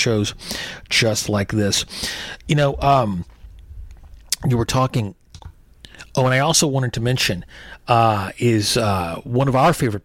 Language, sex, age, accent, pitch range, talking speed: English, male, 30-49, American, 100-125 Hz, 145 wpm